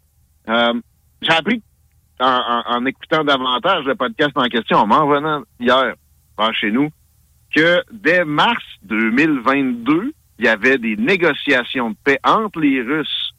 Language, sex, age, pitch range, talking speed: French, male, 60-79, 125-195 Hz, 150 wpm